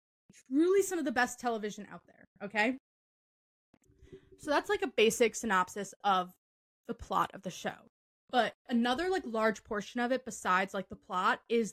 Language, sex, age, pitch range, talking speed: English, female, 20-39, 205-240 Hz, 170 wpm